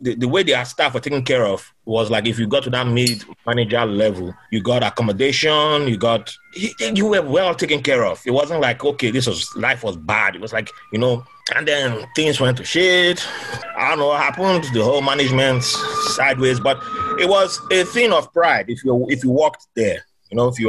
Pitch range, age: 120-155 Hz, 30-49